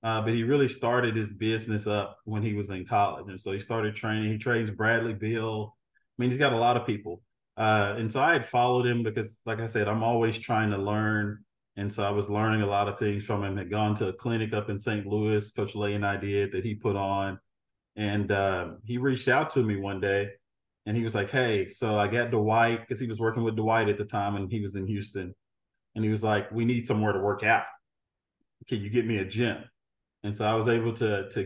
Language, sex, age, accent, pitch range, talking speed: English, male, 20-39, American, 100-115 Hz, 250 wpm